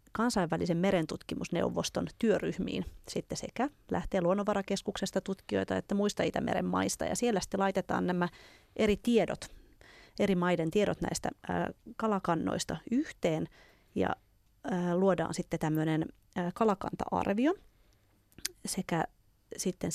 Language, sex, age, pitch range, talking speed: Finnish, female, 30-49, 175-225 Hz, 110 wpm